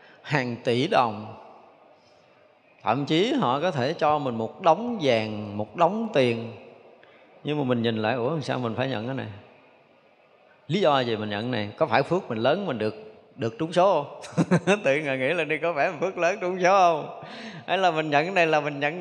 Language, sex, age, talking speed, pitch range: Vietnamese, male, 20-39, 210 wpm, 125-180 Hz